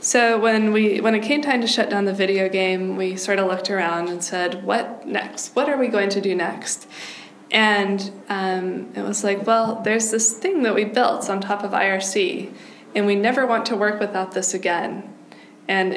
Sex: female